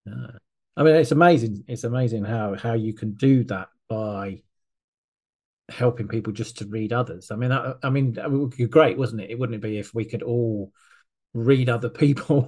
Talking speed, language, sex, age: 210 wpm, English, male, 40-59